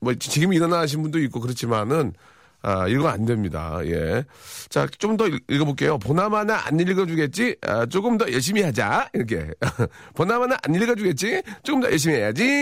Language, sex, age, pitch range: Korean, male, 40-59, 120-190 Hz